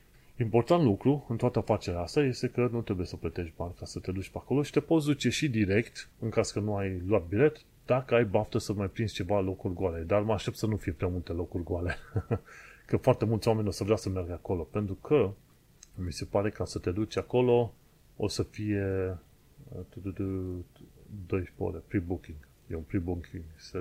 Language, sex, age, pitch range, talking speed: Romanian, male, 30-49, 95-120 Hz, 205 wpm